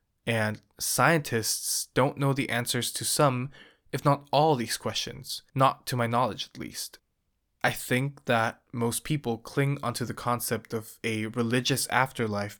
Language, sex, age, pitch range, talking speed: English, male, 20-39, 110-130 Hz, 150 wpm